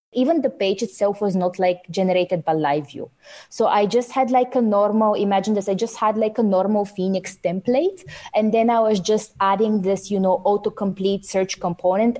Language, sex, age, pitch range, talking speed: English, female, 20-39, 185-220 Hz, 195 wpm